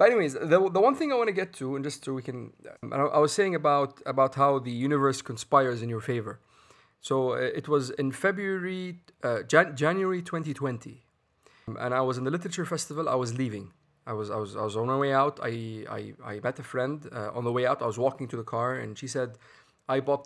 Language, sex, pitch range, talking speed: Arabic, male, 125-150 Hz, 235 wpm